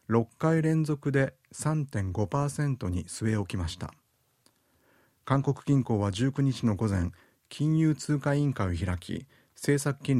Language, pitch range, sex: Japanese, 100-140 Hz, male